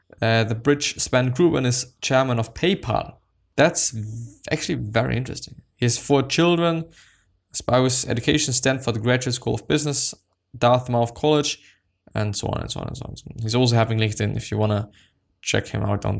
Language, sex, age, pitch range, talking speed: English, male, 10-29, 110-140 Hz, 180 wpm